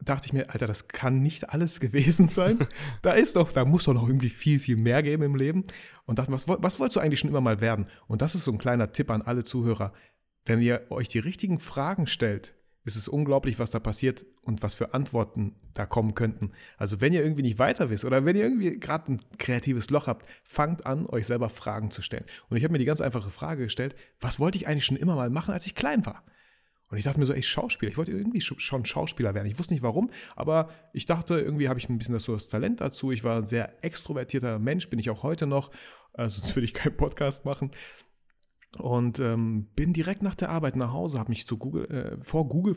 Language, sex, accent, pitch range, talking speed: German, male, German, 115-150 Hz, 245 wpm